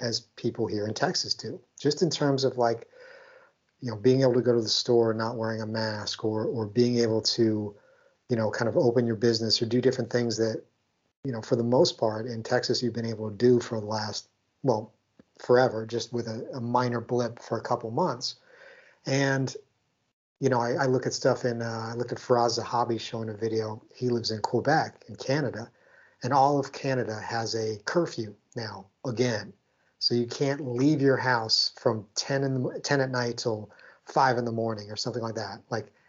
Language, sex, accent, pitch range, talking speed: English, male, American, 115-130 Hz, 210 wpm